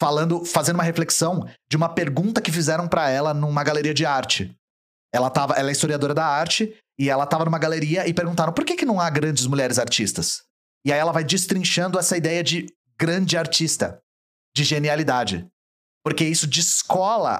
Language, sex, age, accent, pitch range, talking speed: Portuguese, male, 30-49, Brazilian, 145-175 Hz, 180 wpm